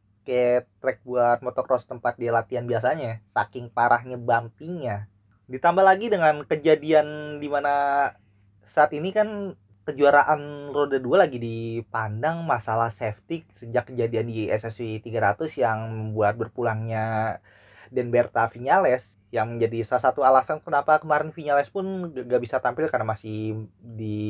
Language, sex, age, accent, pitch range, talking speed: Indonesian, male, 20-39, native, 110-145 Hz, 125 wpm